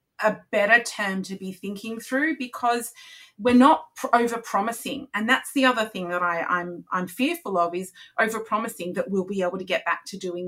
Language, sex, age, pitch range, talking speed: English, female, 30-49, 180-230 Hz, 205 wpm